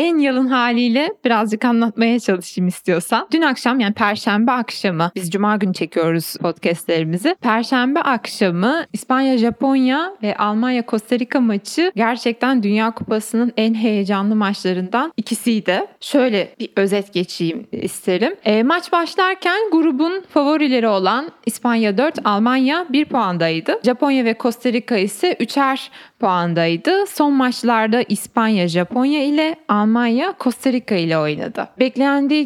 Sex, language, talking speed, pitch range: female, Turkish, 115 wpm, 215-290 Hz